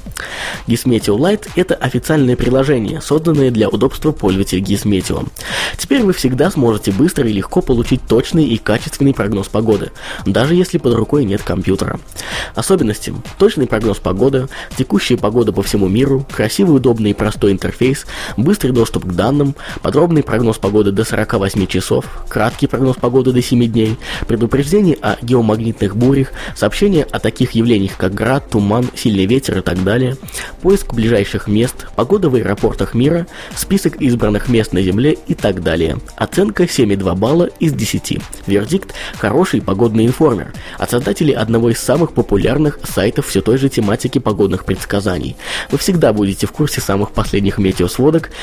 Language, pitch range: Russian, 100-135 Hz